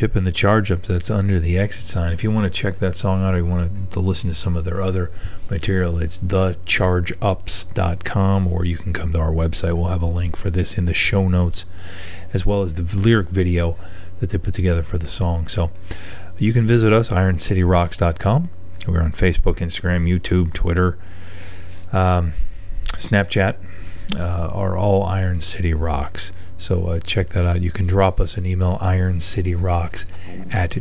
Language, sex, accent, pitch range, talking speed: English, male, American, 90-95 Hz, 180 wpm